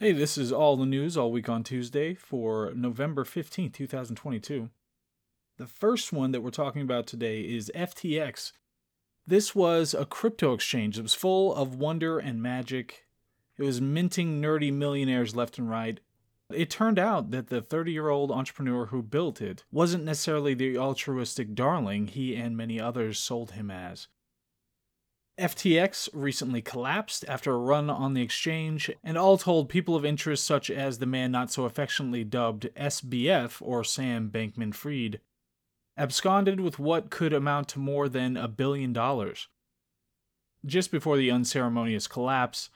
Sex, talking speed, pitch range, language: male, 155 wpm, 120-160 Hz, English